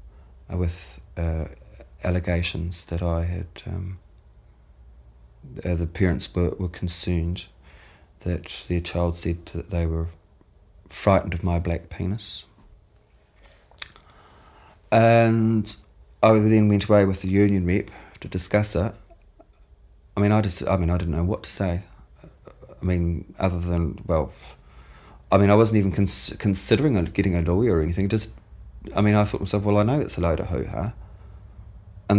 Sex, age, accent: male, 30-49, British